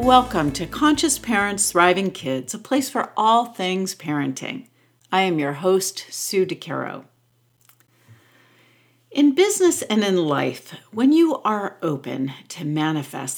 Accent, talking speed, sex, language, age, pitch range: American, 130 wpm, female, English, 50-69, 135-205 Hz